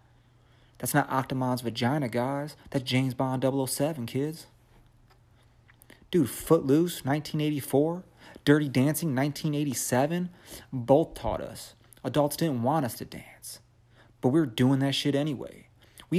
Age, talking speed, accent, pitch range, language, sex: 30-49, 120 wpm, American, 115-135 Hz, English, male